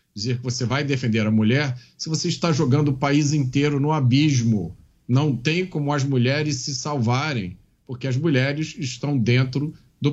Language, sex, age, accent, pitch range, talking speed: Portuguese, male, 40-59, Brazilian, 120-165 Hz, 170 wpm